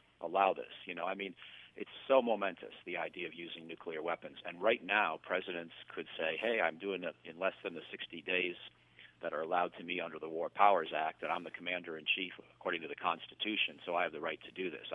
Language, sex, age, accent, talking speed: English, male, 50-69, American, 235 wpm